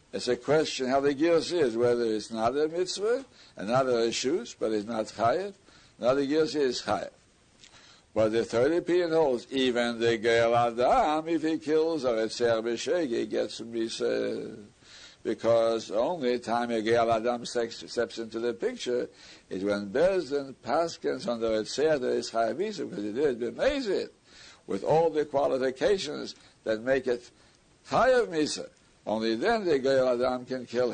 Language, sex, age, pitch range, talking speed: English, male, 60-79, 115-140 Hz, 165 wpm